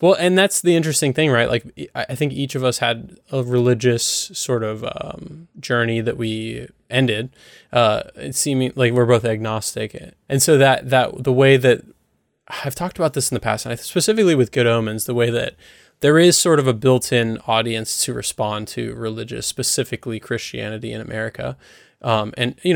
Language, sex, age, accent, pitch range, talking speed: English, male, 20-39, American, 115-135 Hz, 185 wpm